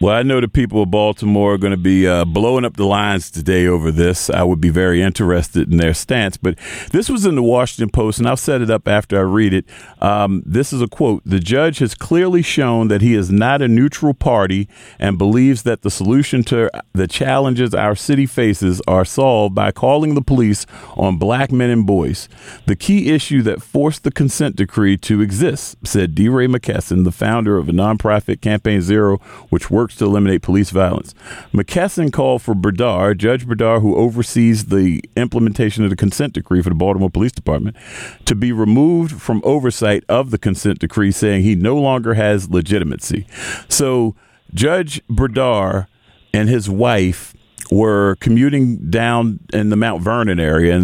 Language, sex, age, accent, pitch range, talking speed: English, male, 40-59, American, 95-120 Hz, 185 wpm